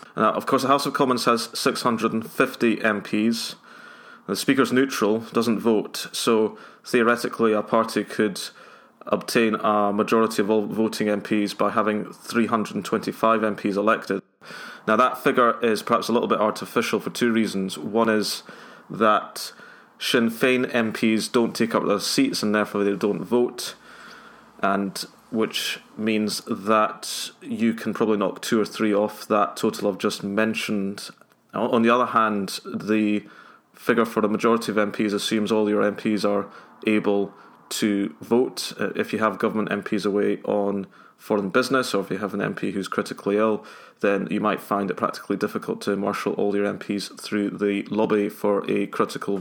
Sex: male